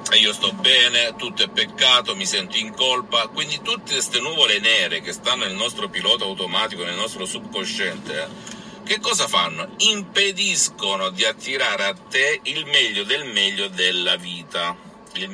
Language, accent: Italian, native